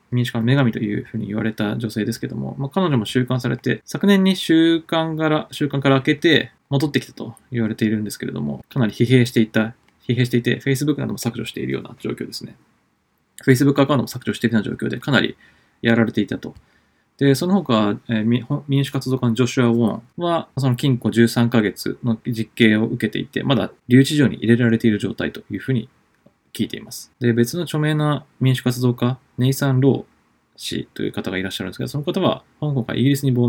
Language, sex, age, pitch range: Japanese, male, 20-39, 110-135 Hz